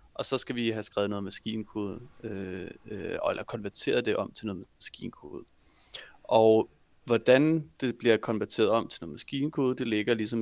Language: Danish